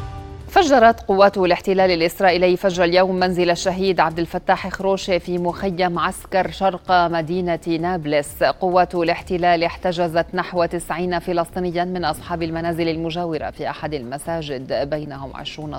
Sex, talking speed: female, 120 wpm